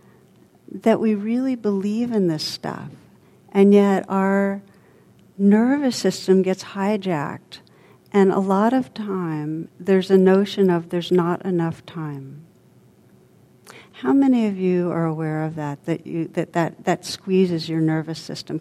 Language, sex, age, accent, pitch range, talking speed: English, female, 60-79, American, 160-190 Hz, 140 wpm